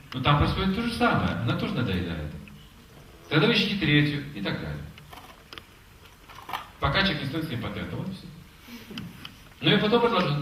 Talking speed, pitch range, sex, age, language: 165 wpm, 95-145 Hz, male, 40-59, Russian